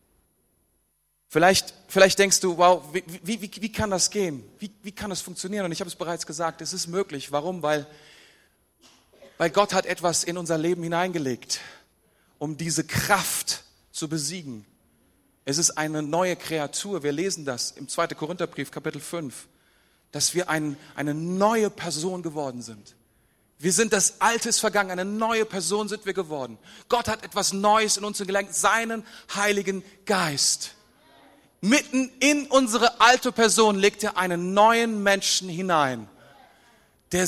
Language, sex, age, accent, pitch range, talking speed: German, male, 40-59, German, 160-220 Hz, 155 wpm